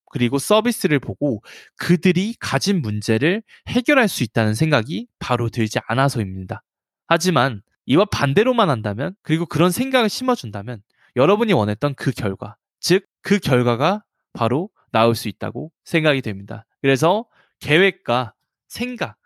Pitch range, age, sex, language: 120-195 Hz, 20-39, male, Korean